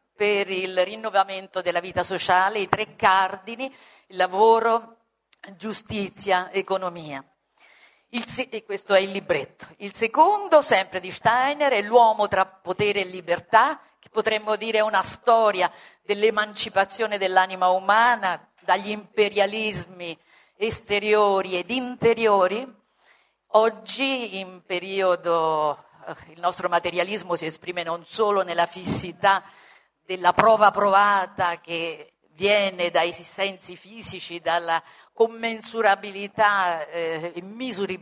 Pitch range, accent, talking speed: 180-220 Hz, native, 105 wpm